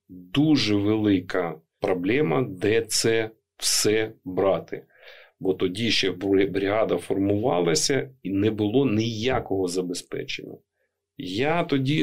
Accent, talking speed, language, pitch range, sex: native, 95 wpm, Ukrainian, 95-125 Hz, male